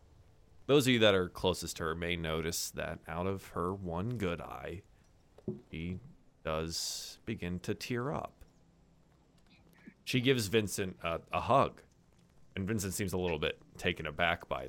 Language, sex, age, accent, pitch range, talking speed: English, male, 20-39, American, 85-130 Hz, 155 wpm